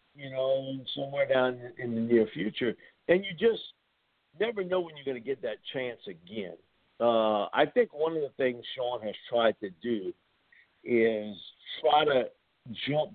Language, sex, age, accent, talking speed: English, male, 50-69, American, 170 wpm